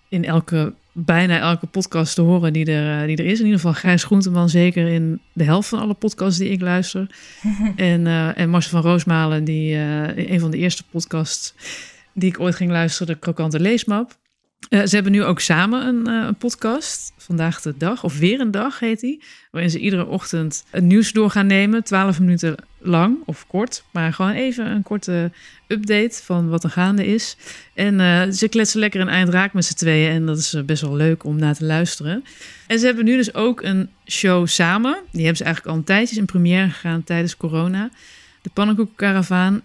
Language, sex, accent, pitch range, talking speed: Dutch, female, Dutch, 165-210 Hz, 205 wpm